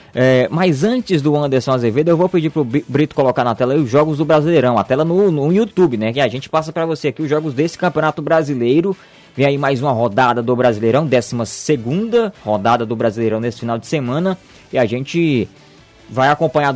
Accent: Brazilian